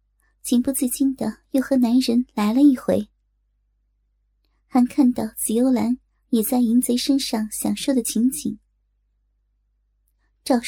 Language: Chinese